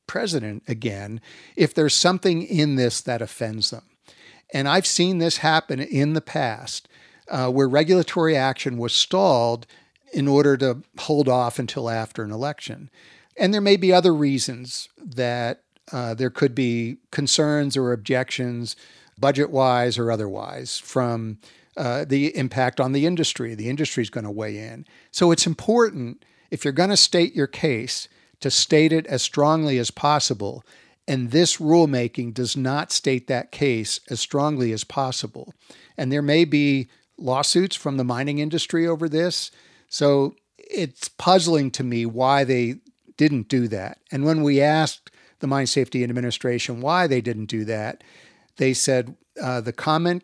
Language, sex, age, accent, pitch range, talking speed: English, male, 50-69, American, 120-155 Hz, 160 wpm